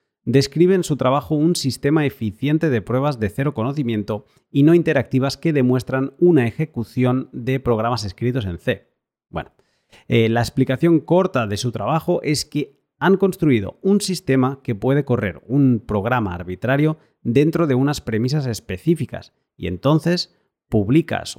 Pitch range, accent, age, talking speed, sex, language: 110-150 Hz, Spanish, 30-49, 145 wpm, male, Spanish